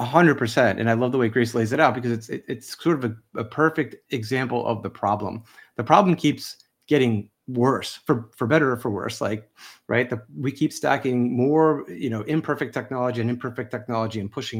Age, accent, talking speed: 30-49, American, 195 wpm